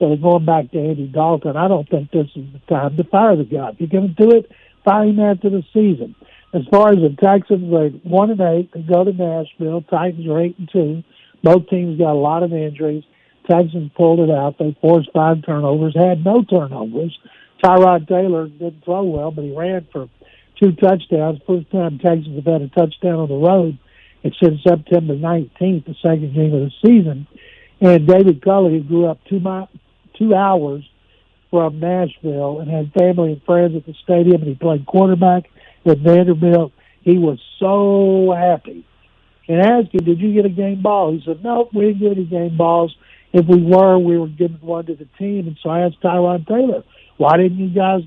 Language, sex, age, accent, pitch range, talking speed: English, male, 60-79, American, 155-185 Hz, 200 wpm